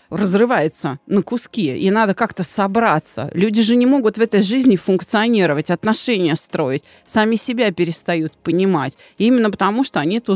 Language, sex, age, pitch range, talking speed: Russian, female, 30-49, 170-235 Hz, 150 wpm